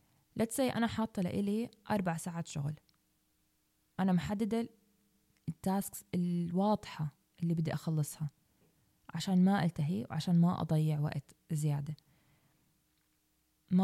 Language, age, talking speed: Arabic, 20-39, 100 wpm